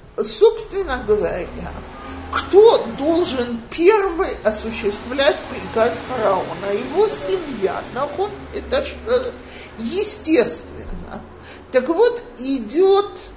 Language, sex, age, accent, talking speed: Russian, male, 50-69, native, 65 wpm